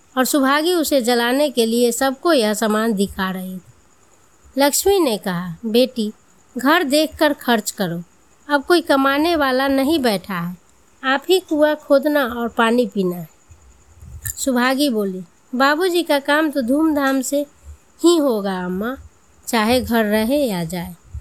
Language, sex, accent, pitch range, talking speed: Hindi, female, native, 205-295 Hz, 140 wpm